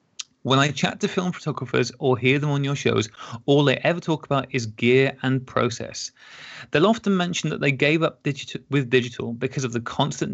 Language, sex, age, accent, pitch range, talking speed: English, male, 30-49, British, 120-155 Hz, 195 wpm